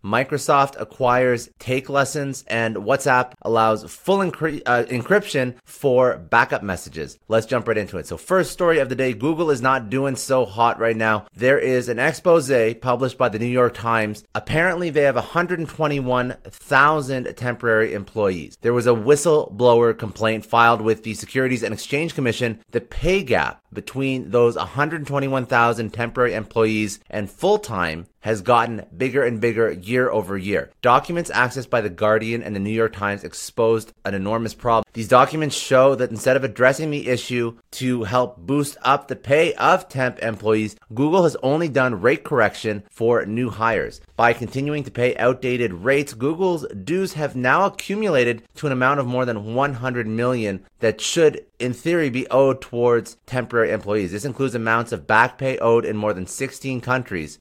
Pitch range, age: 115-140 Hz, 30-49